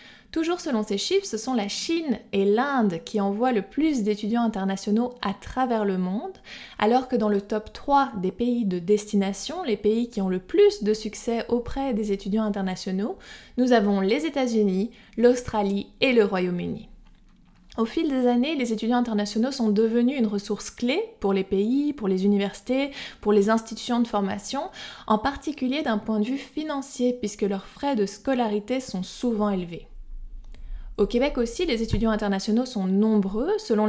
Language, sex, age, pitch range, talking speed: French, female, 20-39, 205-255 Hz, 175 wpm